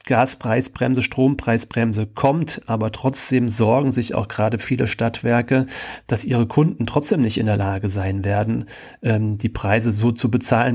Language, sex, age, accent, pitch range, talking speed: German, male, 40-59, German, 110-130 Hz, 145 wpm